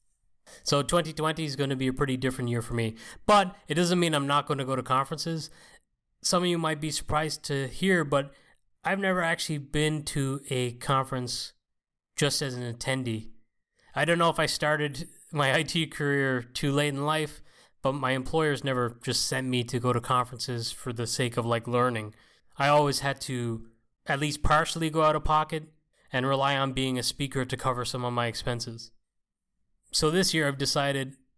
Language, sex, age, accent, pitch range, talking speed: English, male, 20-39, American, 125-155 Hz, 195 wpm